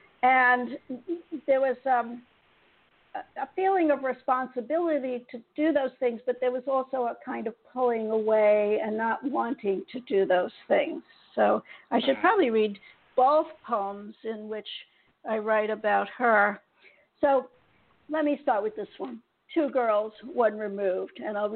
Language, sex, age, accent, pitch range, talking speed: English, female, 60-79, American, 215-265 Hz, 150 wpm